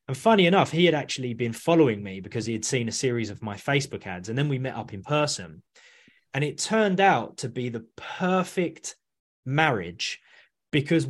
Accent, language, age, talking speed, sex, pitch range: British, English, 20-39, 195 wpm, male, 110-160 Hz